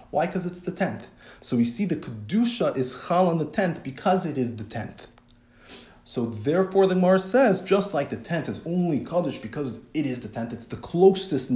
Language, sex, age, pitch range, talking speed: English, male, 40-59, 110-180 Hz, 210 wpm